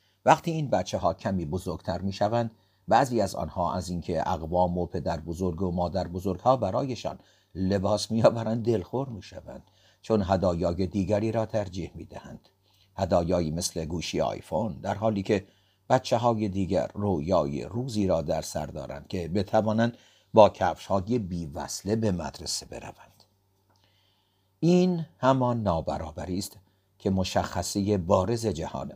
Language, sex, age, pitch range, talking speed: Persian, male, 50-69, 90-110 Hz, 130 wpm